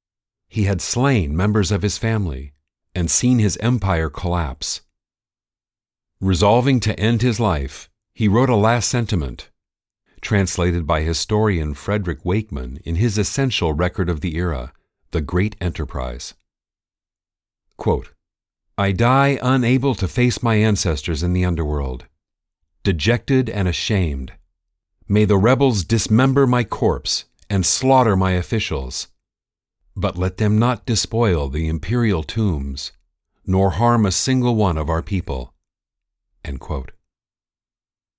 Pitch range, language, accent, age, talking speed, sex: 80-110 Hz, English, American, 50-69, 120 wpm, male